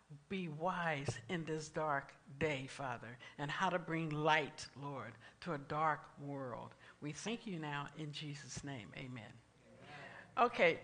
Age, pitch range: 60-79, 155-195 Hz